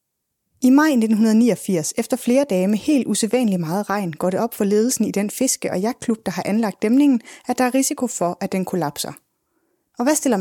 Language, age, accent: Danish, 20-39, native